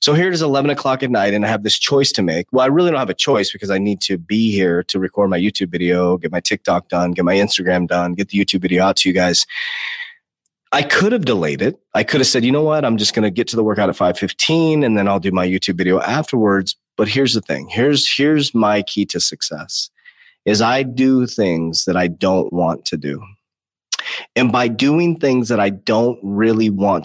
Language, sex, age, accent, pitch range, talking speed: English, male, 30-49, American, 95-130 Hz, 240 wpm